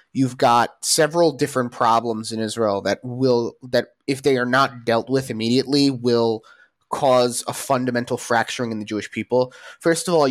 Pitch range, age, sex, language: 115-135 Hz, 20-39, male, English